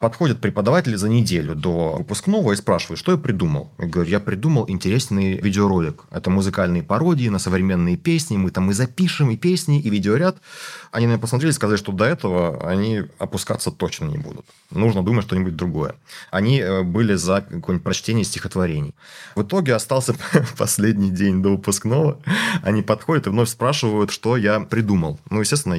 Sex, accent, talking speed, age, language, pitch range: male, native, 165 wpm, 30-49, Russian, 95-120 Hz